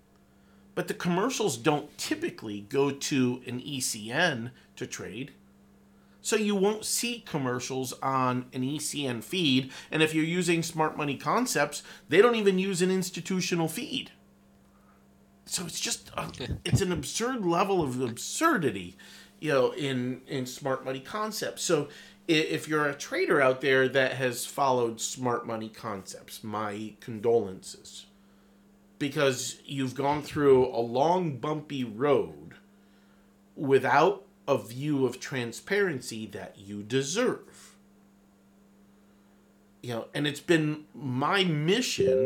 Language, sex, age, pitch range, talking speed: English, male, 40-59, 110-155 Hz, 125 wpm